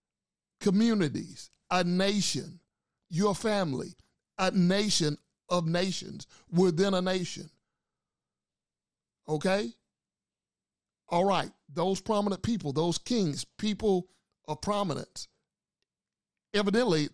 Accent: American